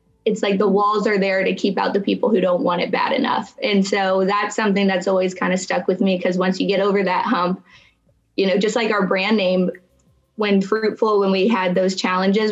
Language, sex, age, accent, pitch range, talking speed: English, female, 20-39, American, 185-210 Hz, 235 wpm